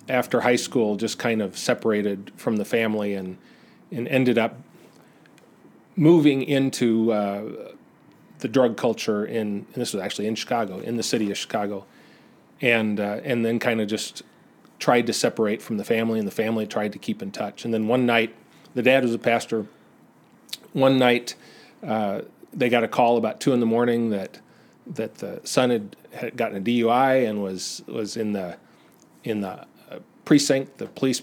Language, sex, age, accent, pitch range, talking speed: English, male, 40-59, American, 105-130 Hz, 180 wpm